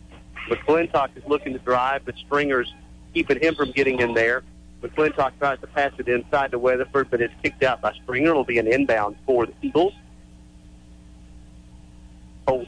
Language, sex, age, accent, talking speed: English, male, 50-69, American, 165 wpm